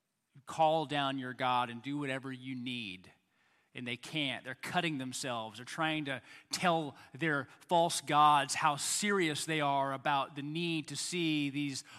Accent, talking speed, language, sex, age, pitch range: American, 160 wpm, English, male, 30-49, 130-165 Hz